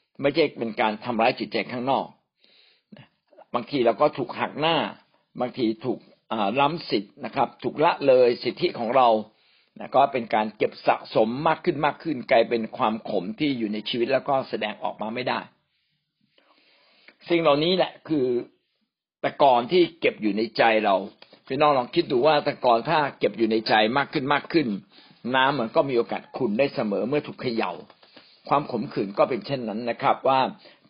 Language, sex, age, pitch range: Thai, male, 60-79, 115-165 Hz